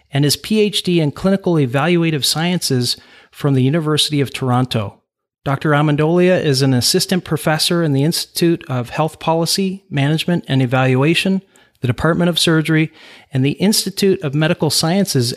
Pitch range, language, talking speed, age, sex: 135-180 Hz, English, 145 wpm, 40-59, male